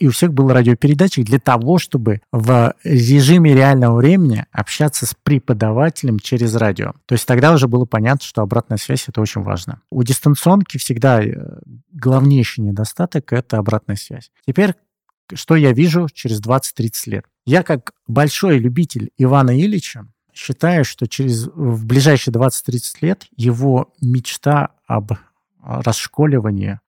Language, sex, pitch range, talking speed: Russian, male, 115-145 Hz, 135 wpm